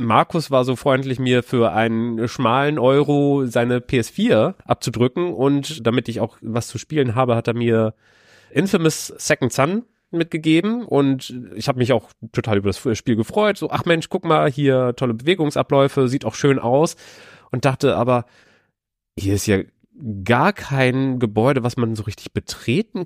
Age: 30-49